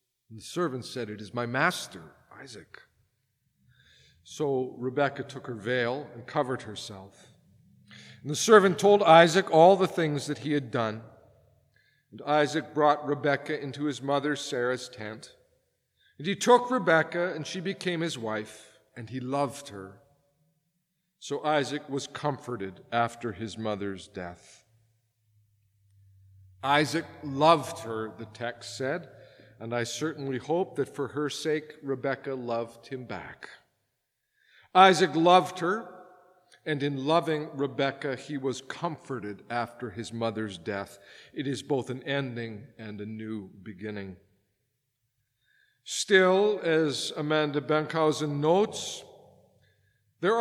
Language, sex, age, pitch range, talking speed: English, male, 50-69, 115-160 Hz, 125 wpm